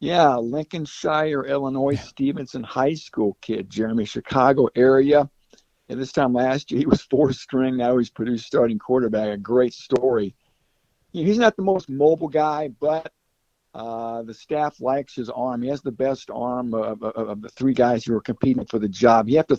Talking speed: 180 wpm